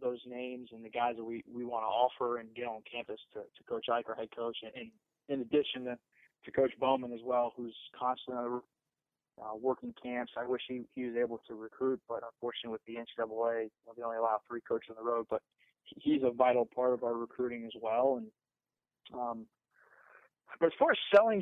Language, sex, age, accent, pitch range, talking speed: English, male, 20-39, American, 120-135 Hz, 210 wpm